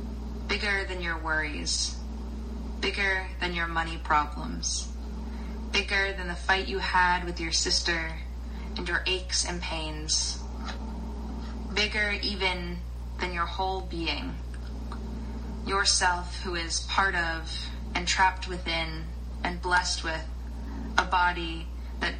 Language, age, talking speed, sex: English, 20-39, 115 wpm, female